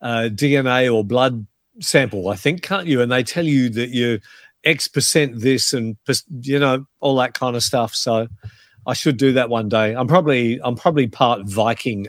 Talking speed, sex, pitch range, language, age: 200 wpm, male, 120-155 Hz, English, 50-69